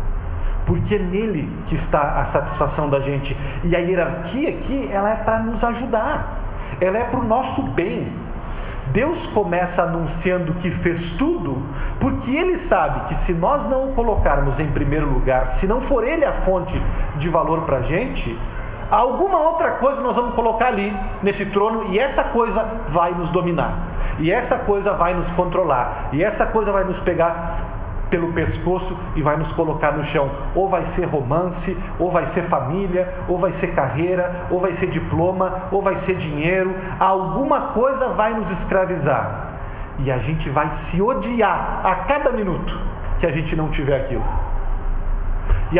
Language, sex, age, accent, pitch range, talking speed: Portuguese, male, 40-59, Brazilian, 140-195 Hz, 170 wpm